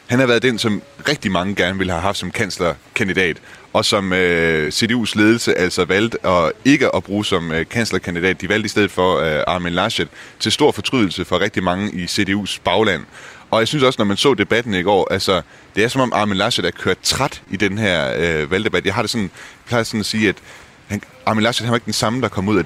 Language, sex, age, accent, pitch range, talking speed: Danish, male, 30-49, native, 90-110 Hz, 235 wpm